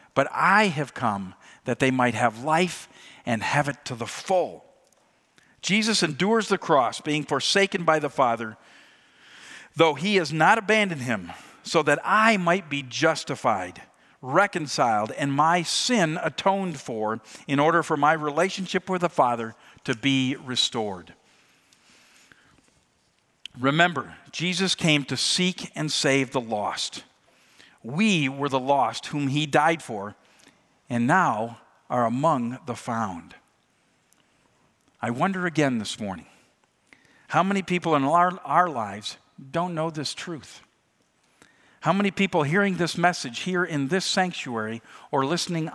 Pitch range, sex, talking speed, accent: 135-180 Hz, male, 135 wpm, American